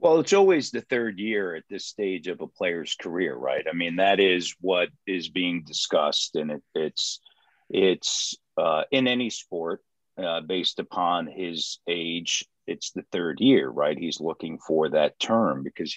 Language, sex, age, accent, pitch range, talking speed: English, male, 50-69, American, 90-115 Hz, 175 wpm